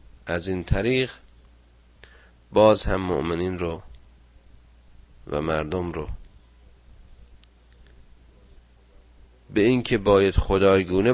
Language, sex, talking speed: Persian, male, 75 wpm